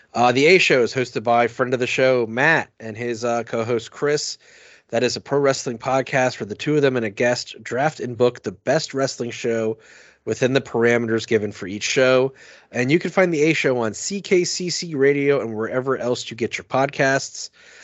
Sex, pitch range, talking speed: male, 120-145 Hz, 200 wpm